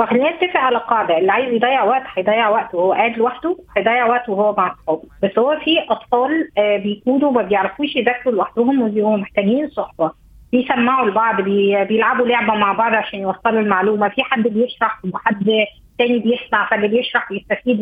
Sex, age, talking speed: female, 20-39, 160 wpm